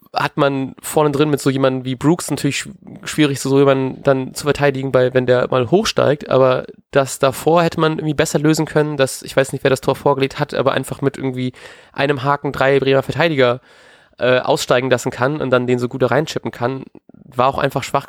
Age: 20-39